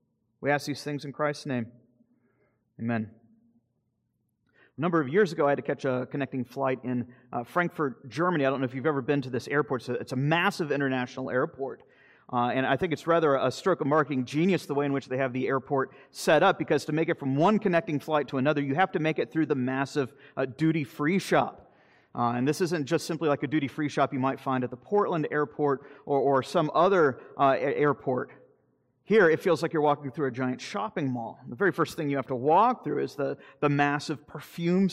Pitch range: 130-155 Hz